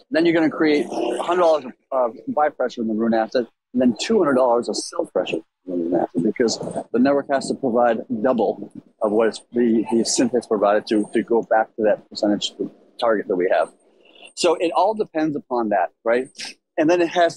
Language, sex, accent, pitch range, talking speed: English, male, American, 115-160 Hz, 205 wpm